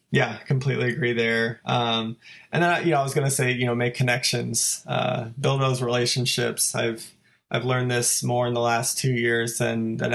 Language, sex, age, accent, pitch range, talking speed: English, male, 20-39, American, 120-135 Hz, 195 wpm